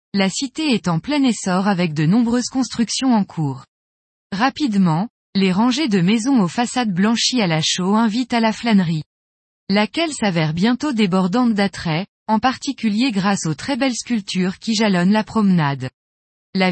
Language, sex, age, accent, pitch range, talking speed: French, female, 20-39, French, 185-240 Hz, 160 wpm